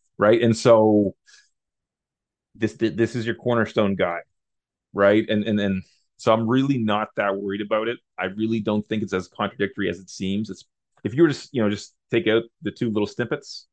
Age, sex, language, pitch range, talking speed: 30-49, male, English, 95-115 Hz, 195 wpm